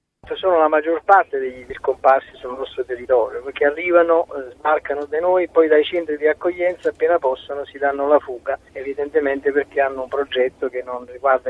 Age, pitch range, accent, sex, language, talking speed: 40-59, 135-195 Hz, native, male, Italian, 170 wpm